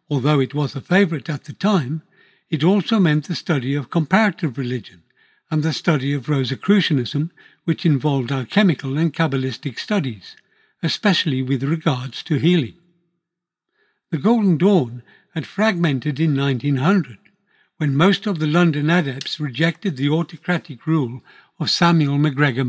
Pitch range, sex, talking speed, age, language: 140-175 Hz, male, 140 wpm, 60-79, English